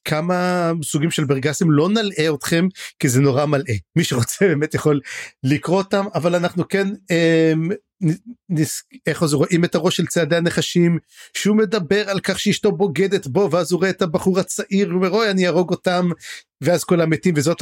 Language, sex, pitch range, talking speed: Hebrew, male, 155-200 Hz, 185 wpm